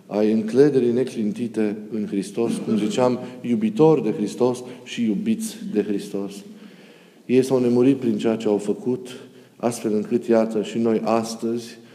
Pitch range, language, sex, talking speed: 105-120 Hz, Romanian, male, 140 wpm